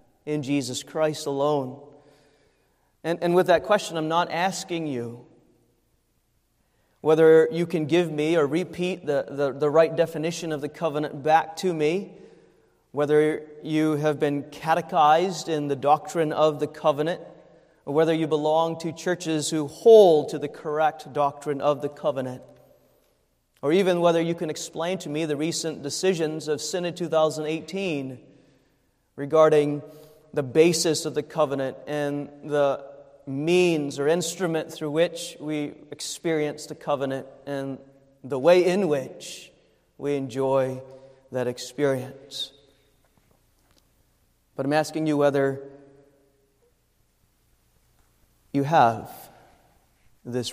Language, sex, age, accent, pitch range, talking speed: English, male, 30-49, American, 140-160 Hz, 125 wpm